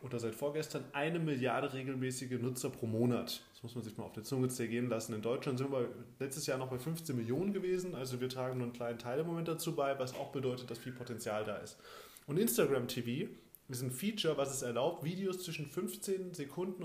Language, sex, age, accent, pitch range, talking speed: German, male, 20-39, German, 125-160 Hz, 220 wpm